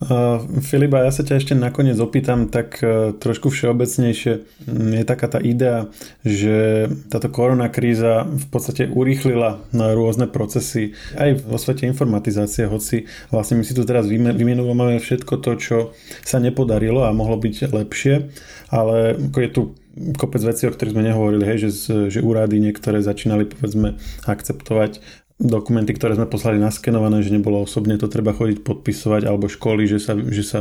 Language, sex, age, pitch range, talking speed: Slovak, male, 20-39, 105-125 Hz, 155 wpm